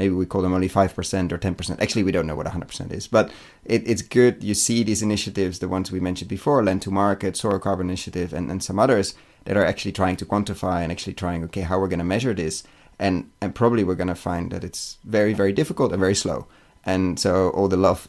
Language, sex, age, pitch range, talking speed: English, male, 30-49, 90-105 Hz, 250 wpm